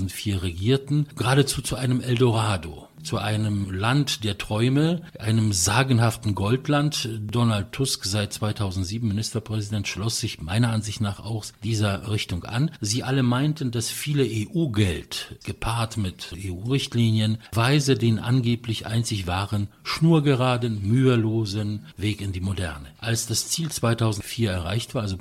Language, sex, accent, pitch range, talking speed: English, male, German, 100-120 Hz, 130 wpm